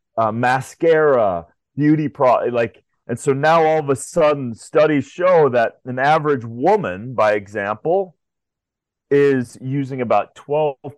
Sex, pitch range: male, 105-130 Hz